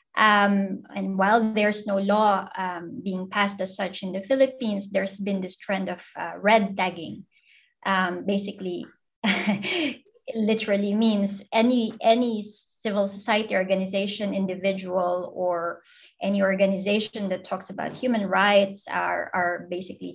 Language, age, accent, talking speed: English, 20-39, Filipino, 130 wpm